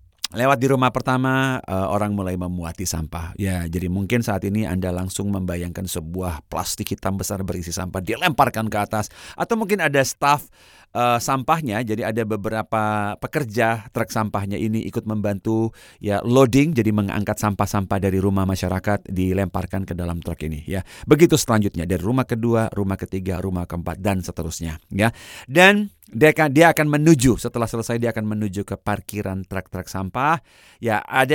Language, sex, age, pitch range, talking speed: Indonesian, male, 30-49, 90-130 Hz, 155 wpm